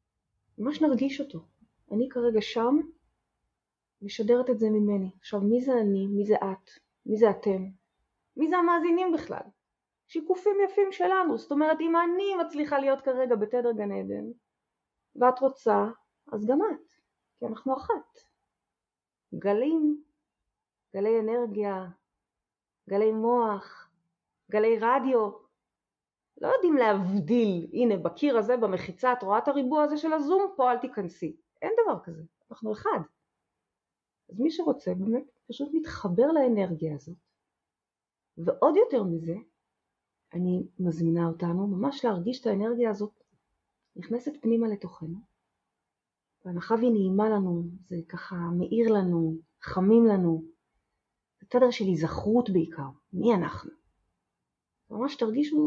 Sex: female